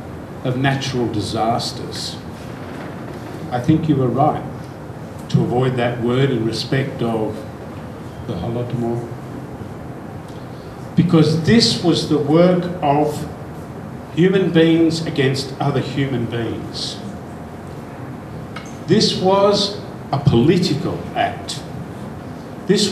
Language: Ukrainian